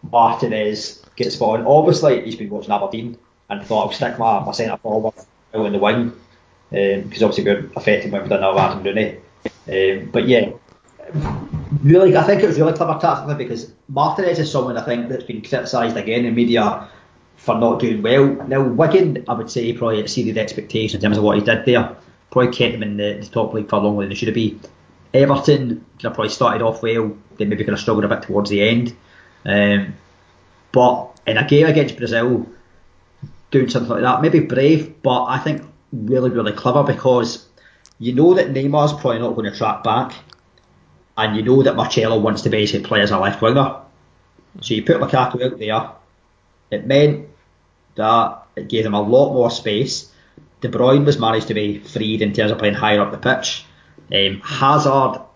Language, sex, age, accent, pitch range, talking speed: English, male, 20-39, British, 105-130 Hz, 200 wpm